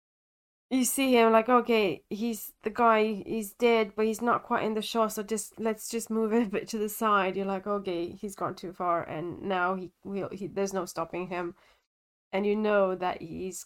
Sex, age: female, 10-29